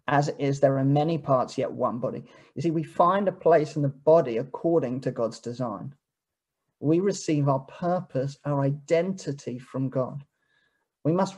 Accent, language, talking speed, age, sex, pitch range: British, English, 175 wpm, 30-49, male, 140-165 Hz